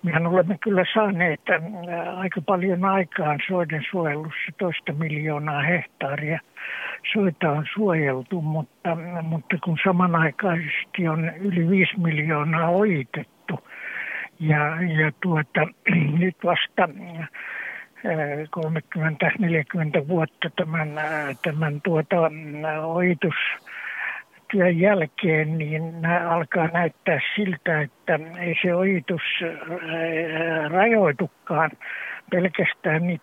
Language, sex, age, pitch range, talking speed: Finnish, male, 60-79, 155-185 Hz, 85 wpm